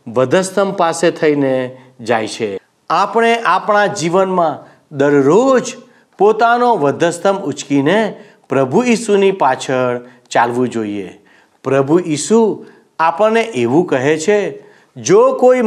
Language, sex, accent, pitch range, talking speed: Gujarati, male, native, 145-220 Hz, 95 wpm